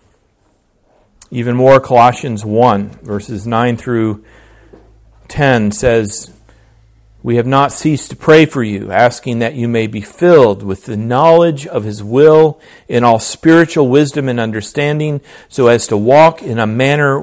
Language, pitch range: English, 105-135 Hz